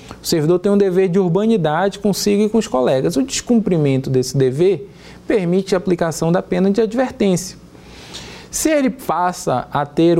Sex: male